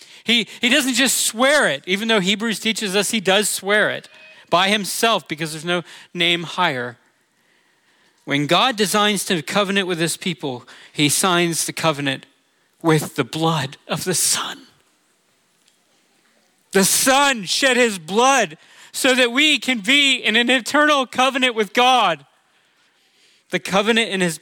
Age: 40-59